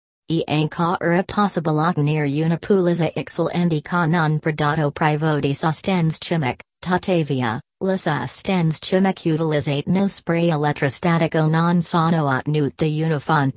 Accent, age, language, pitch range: American, 40-59, Italian, 150-180 Hz